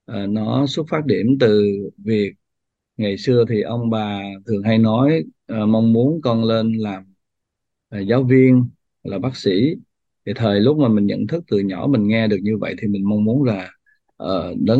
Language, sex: Vietnamese, male